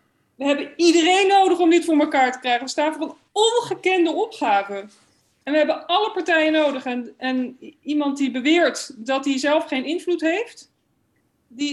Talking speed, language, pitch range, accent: 175 wpm, Dutch, 240-300 Hz, Dutch